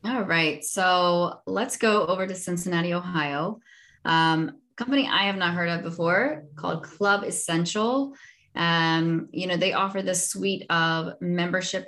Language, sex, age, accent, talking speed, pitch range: English, female, 20-39, American, 145 wpm, 155-195 Hz